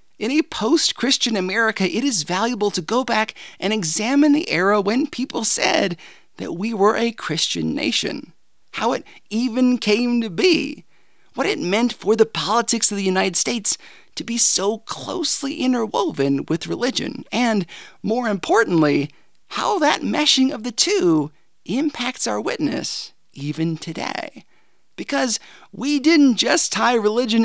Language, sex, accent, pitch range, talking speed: English, male, American, 190-255 Hz, 145 wpm